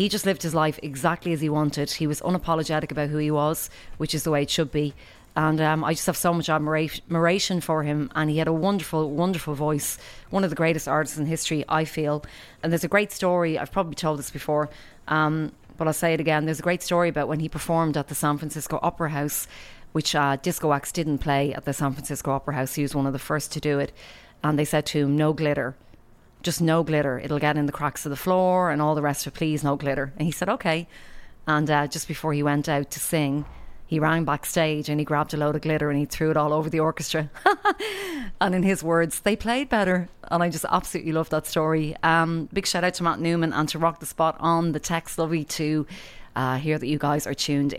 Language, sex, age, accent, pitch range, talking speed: English, female, 30-49, Irish, 150-165 Hz, 245 wpm